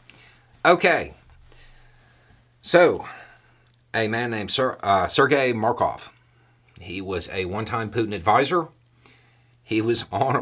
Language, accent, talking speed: English, American, 100 wpm